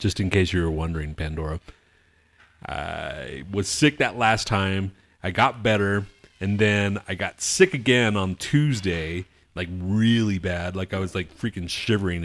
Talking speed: 160 wpm